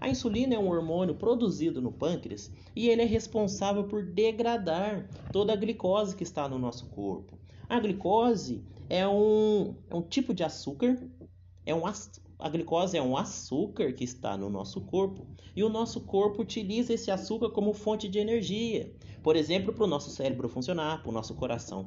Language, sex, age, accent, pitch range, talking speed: Portuguese, male, 30-49, Brazilian, 130-215 Hz, 170 wpm